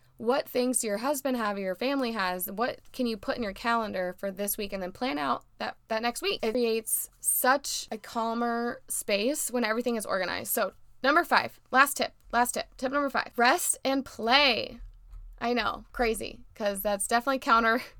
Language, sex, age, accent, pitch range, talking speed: English, female, 20-39, American, 205-265 Hz, 190 wpm